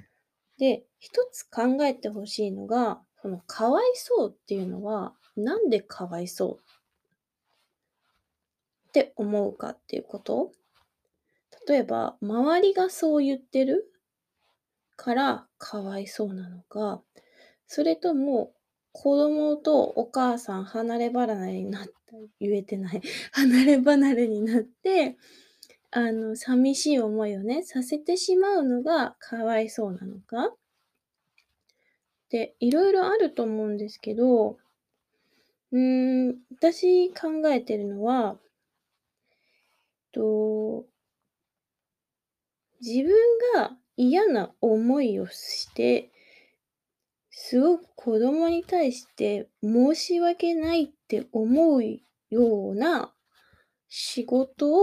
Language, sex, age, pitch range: Japanese, female, 20-39, 220-315 Hz